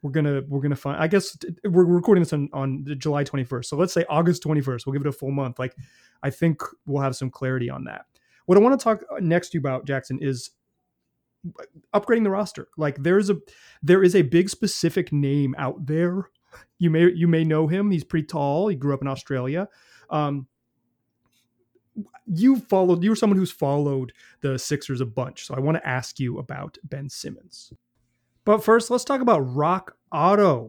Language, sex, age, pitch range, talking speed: English, male, 30-49, 140-190 Hz, 205 wpm